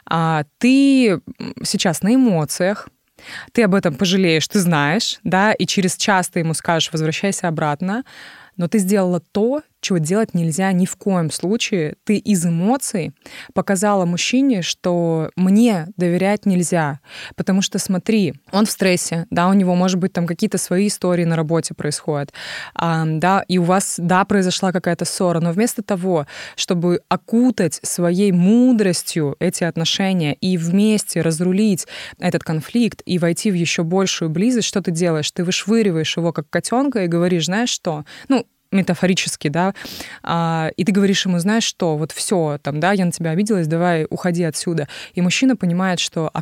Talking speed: 160 wpm